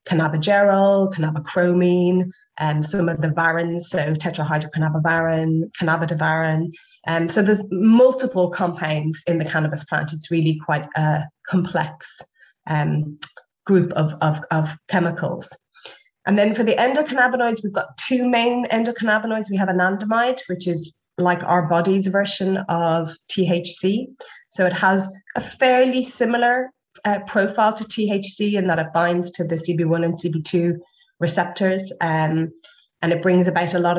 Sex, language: female, English